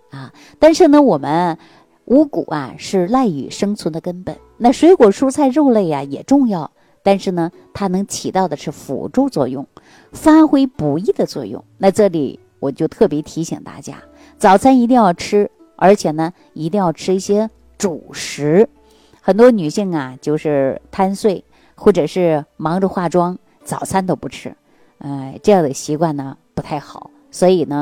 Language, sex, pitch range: Chinese, female, 150-210 Hz